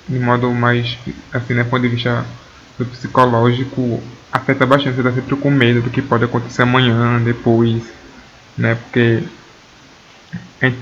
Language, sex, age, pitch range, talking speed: Portuguese, male, 20-39, 120-130 Hz, 145 wpm